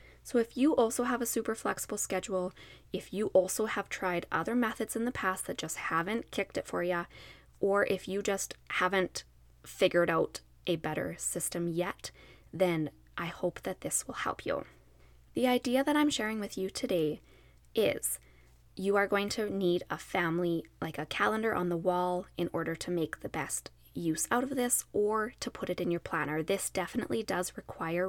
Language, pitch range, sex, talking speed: English, 170-220 Hz, female, 190 wpm